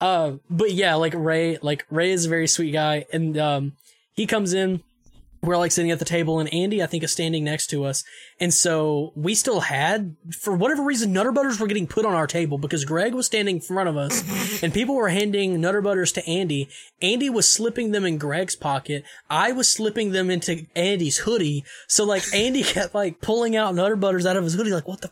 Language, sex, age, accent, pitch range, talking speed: English, male, 10-29, American, 150-200 Hz, 225 wpm